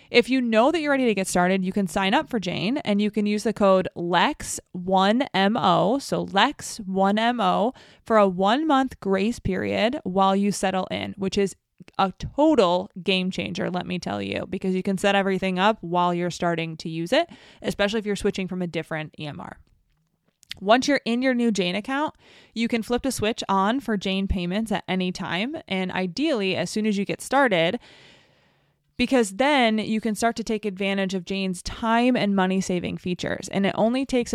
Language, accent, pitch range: English, American, 185-230 Hz